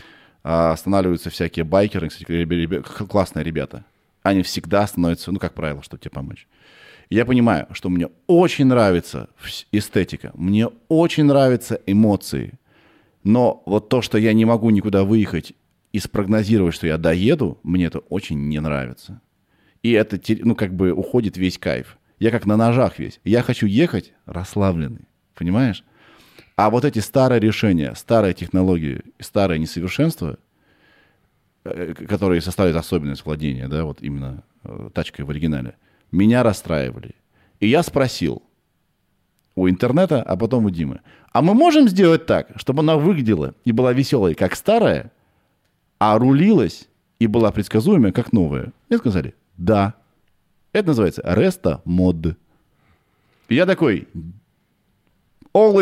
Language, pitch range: Russian, 85-115 Hz